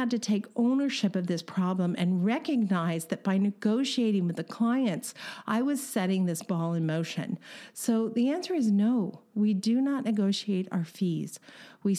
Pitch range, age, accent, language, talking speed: 185-240 Hz, 50-69, American, English, 175 wpm